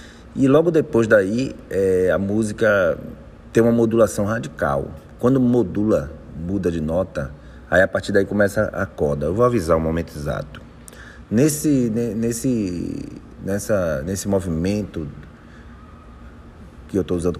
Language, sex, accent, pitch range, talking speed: Portuguese, male, Brazilian, 80-110 Hz, 120 wpm